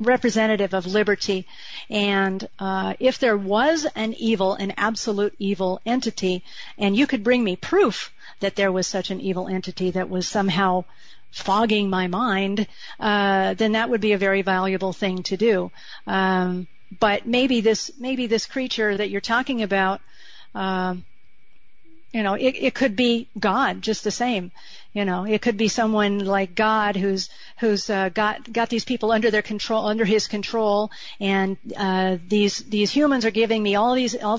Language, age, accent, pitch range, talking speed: English, 50-69, American, 195-235 Hz, 170 wpm